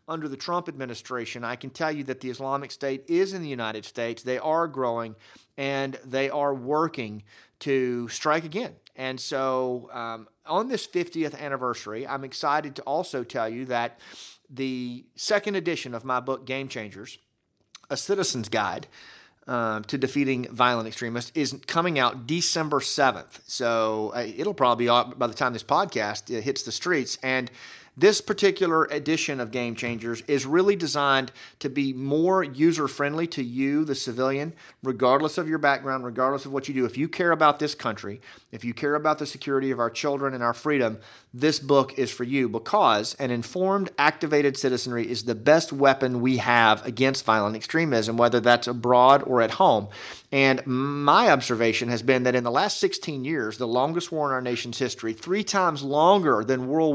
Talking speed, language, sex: 175 wpm, English, male